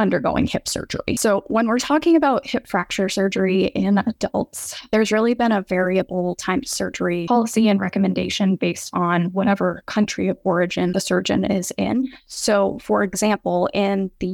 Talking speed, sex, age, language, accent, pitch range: 160 wpm, female, 10-29, English, American, 190-235 Hz